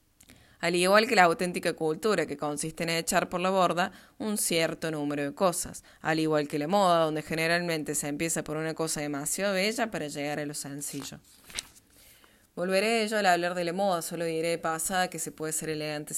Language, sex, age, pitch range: Spanish, female, 20-39, 155-180 Hz